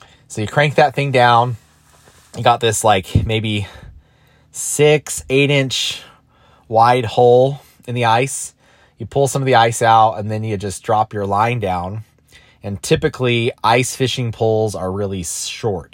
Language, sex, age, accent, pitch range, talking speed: English, male, 20-39, American, 95-115 Hz, 160 wpm